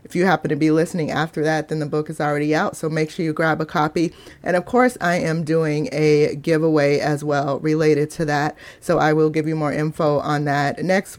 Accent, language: American, English